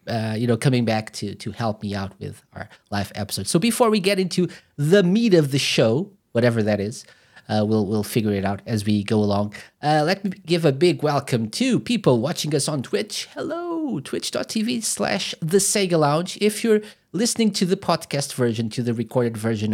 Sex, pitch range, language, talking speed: male, 105-165 Hz, English, 205 wpm